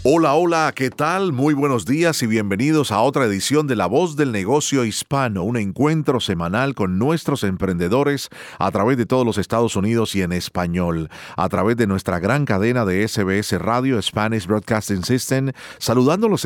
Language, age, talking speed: Spanish, 40-59, 170 wpm